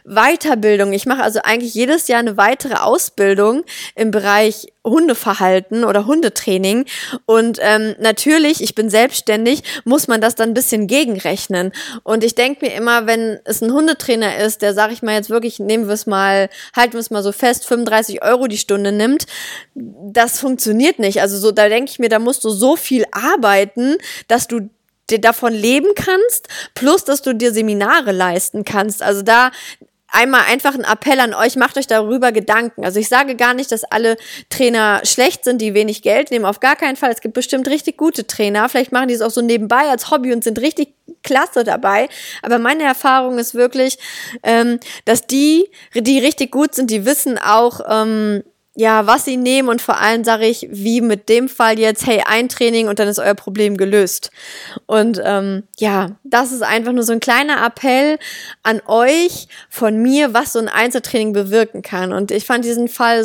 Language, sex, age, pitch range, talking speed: German, female, 20-39, 215-255 Hz, 190 wpm